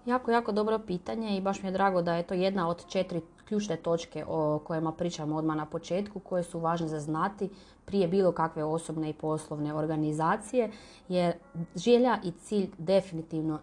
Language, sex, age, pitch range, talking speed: Croatian, female, 30-49, 165-215 Hz, 175 wpm